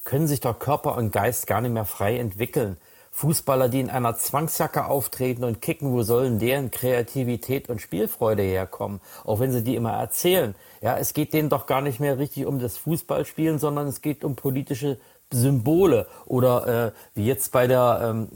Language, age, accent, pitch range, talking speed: German, 40-59, German, 115-145 Hz, 185 wpm